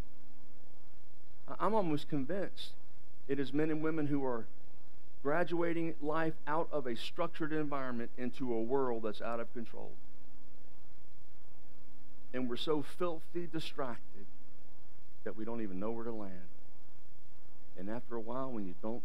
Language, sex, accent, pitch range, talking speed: English, male, American, 125-155 Hz, 140 wpm